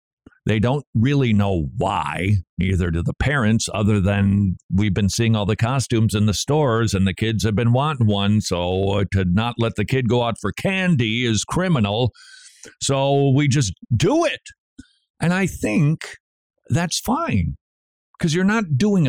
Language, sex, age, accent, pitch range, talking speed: English, male, 50-69, American, 100-145 Hz, 165 wpm